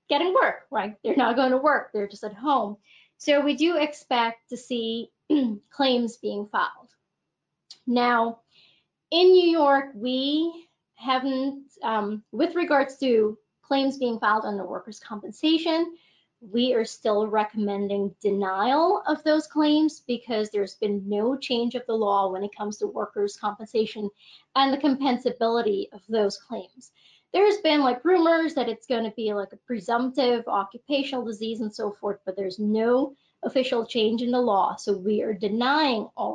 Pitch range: 215-275 Hz